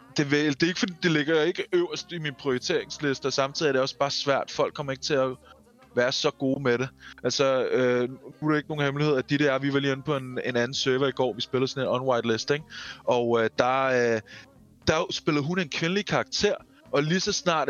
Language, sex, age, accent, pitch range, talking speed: Danish, male, 20-39, native, 120-150 Hz, 235 wpm